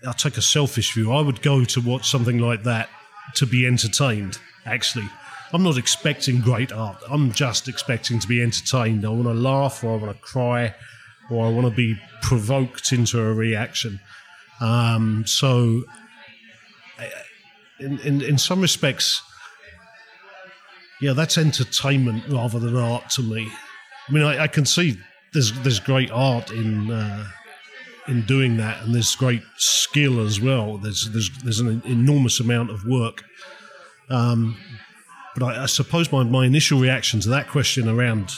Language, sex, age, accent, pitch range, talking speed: English, male, 40-59, British, 115-140 Hz, 165 wpm